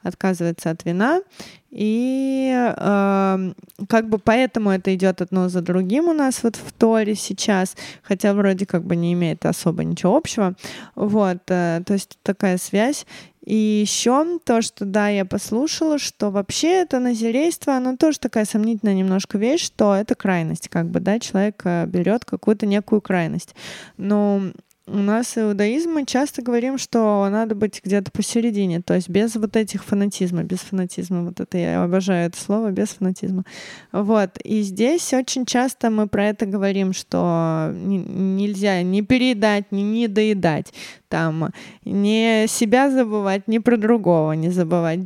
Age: 20-39